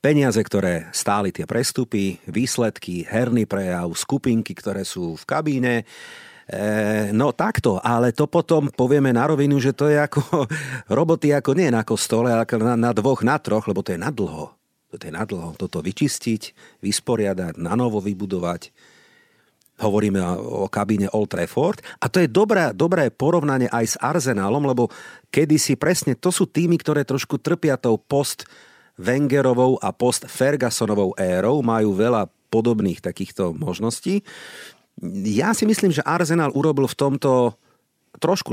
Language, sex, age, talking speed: Slovak, male, 50-69, 150 wpm